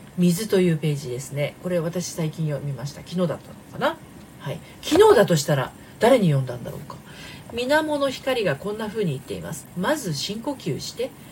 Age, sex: 40-59, female